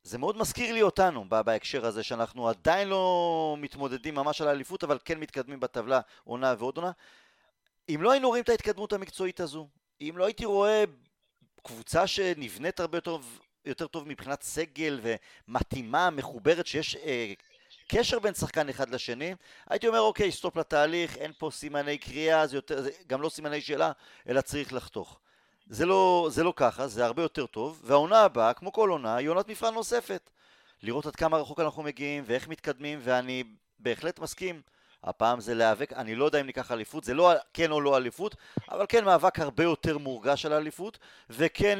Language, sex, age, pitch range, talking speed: Hebrew, male, 40-59, 130-175 Hz, 175 wpm